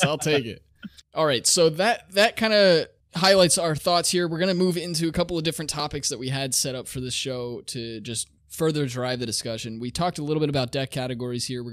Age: 20-39